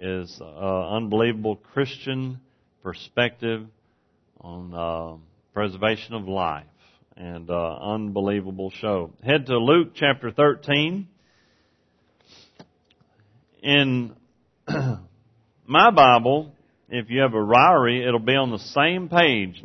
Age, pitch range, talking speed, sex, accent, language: 40-59, 110-150 Hz, 110 wpm, male, American, English